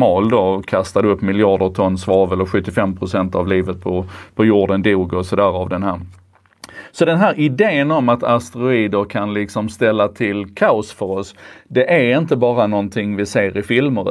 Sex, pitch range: male, 100-130 Hz